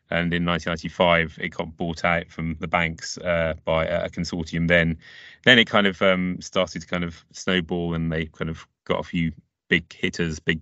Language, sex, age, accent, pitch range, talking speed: English, male, 30-49, British, 85-95 Hz, 200 wpm